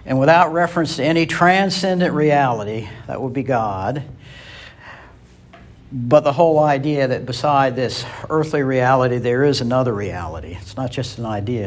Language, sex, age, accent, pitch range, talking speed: English, male, 60-79, American, 110-145 Hz, 150 wpm